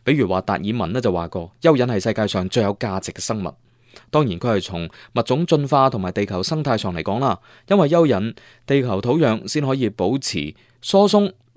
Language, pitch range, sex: Chinese, 105-150 Hz, male